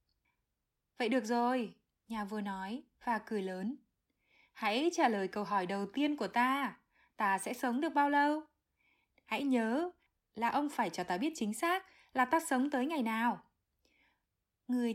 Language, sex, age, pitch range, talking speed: Vietnamese, female, 20-39, 210-280 Hz, 165 wpm